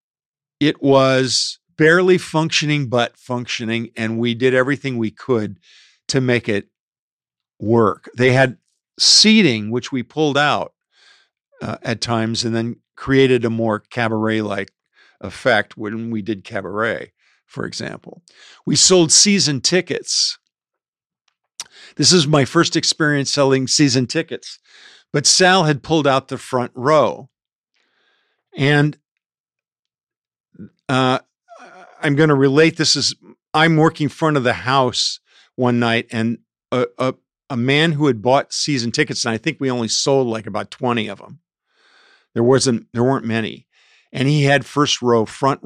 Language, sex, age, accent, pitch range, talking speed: English, male, 50-69, American, 115-155 Hz, 140 wpm